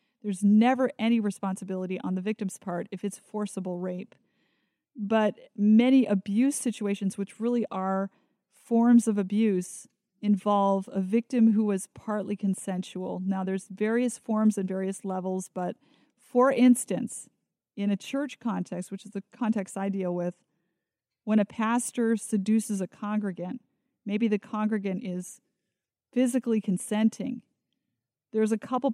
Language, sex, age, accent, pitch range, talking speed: English, female, 30-49, American, 195-235 Hz, 135 wpm